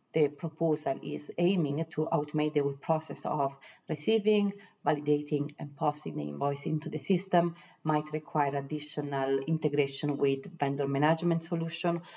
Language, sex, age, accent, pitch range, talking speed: English, female, 30-49, Italian, 150-170 Hz, 130 wpm